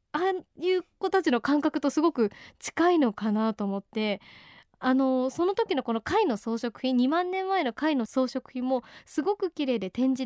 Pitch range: 225-320 Hz